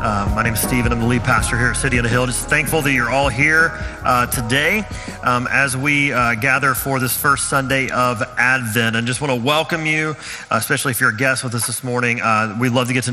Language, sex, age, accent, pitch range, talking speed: English, male, 30-49, American, 120-145 Hz, 250 wpm